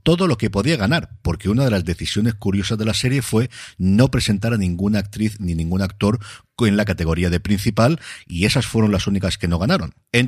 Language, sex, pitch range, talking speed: Spanish, male, 85-115 Hz, 215 wpm